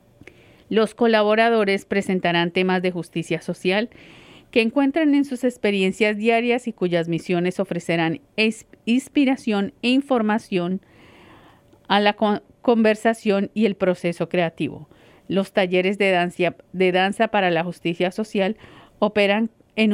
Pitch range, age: 185-225 Hz, 40-59